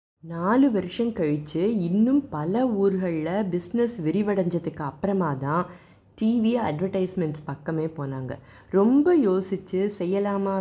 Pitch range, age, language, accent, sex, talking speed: 150-205 Hz, 20-39, Tamil, native, female, 95 wpm